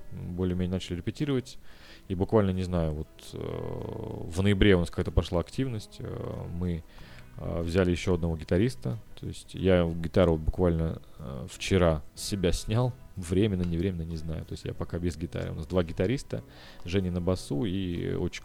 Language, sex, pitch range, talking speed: Russian, male, 85-100 Hz, 165 wpm